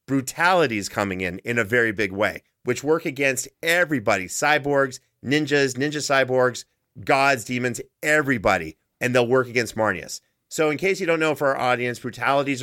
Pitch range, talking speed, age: 115-140 Hz, 160 wpm, 40-59